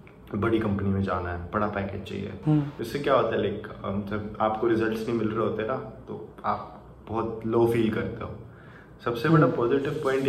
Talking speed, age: 190 wpm, 20-39